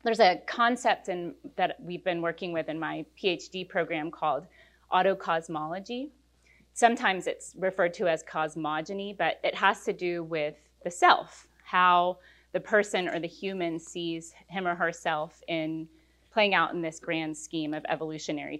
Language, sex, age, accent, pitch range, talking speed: English, female, 30-49, American, 160-210 Hz, 150 wpm